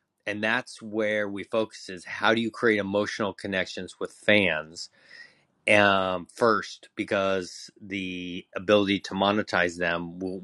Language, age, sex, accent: English, 30-49, male, American